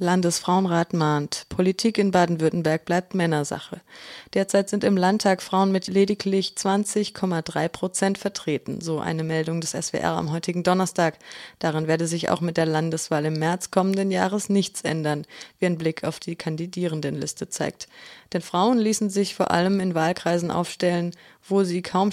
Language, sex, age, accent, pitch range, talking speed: German, female, 20-39, German, 165-195 Hz, 155 wpm